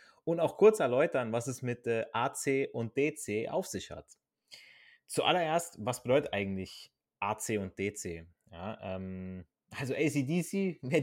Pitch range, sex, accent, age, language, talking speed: 105-140 Hz, male, German, 20-39, German, 130 wpm